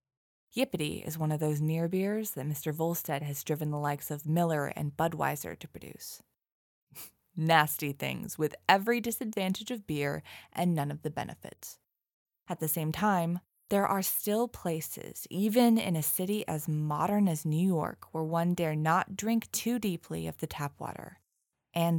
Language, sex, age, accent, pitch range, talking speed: English, female, 20-39, American, 150-195 Hz, 165 wpm